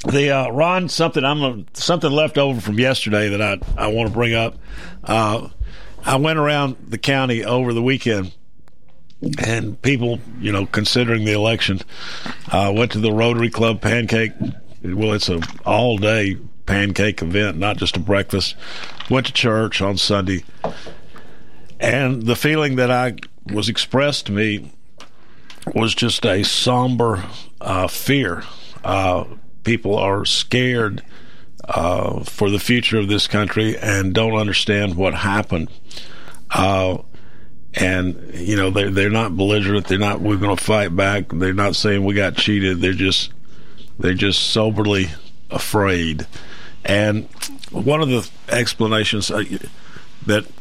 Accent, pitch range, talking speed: American, 100-120 Hz, 140 wpm